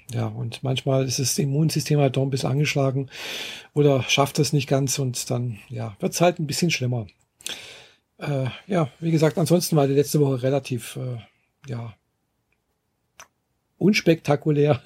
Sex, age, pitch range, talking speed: male, 50-69, 125-155 Hz, 155 wpm